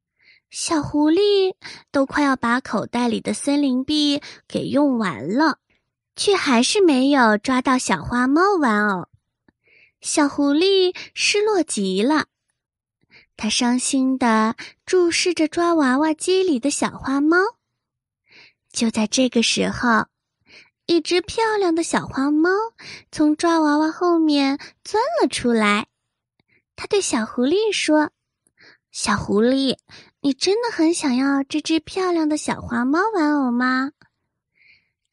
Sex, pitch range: female, 240-330 Hz